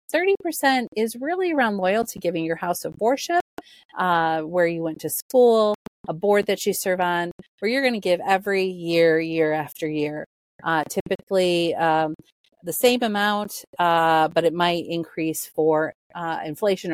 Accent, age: American, 30-49